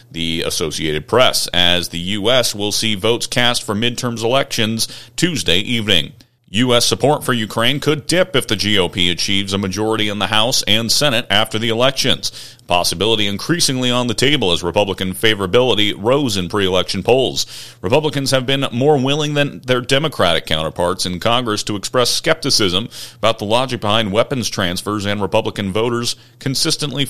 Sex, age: male, 40-59